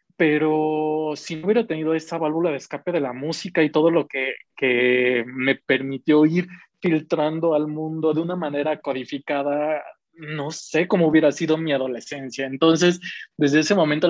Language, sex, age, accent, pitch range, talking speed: Spanish, male, 20-39, Mexican, 140-165 Hz, 160 wpm